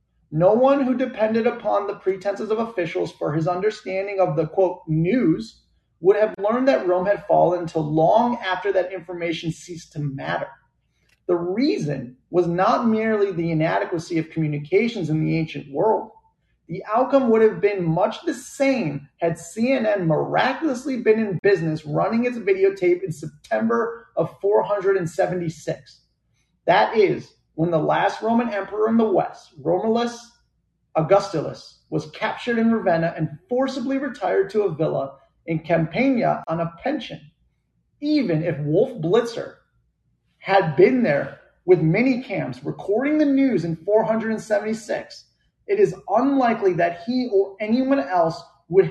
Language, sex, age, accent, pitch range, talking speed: English, male, 30-49, American, 165-230 Hz, 140 wpm